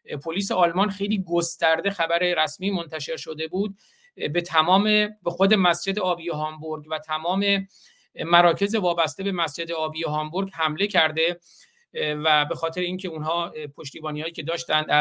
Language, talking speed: Persian, 140 wpm